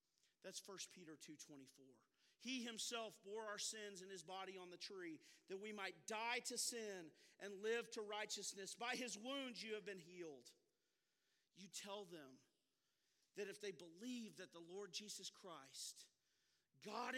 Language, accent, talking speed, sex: English, American, 155 wpm, male